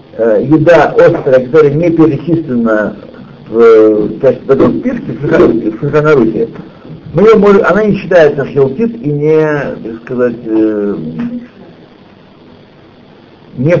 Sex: male